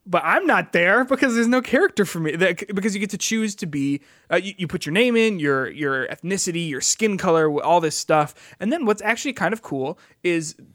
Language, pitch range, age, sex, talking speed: English, 140-185 Hz, 20-39, male, 230 wpm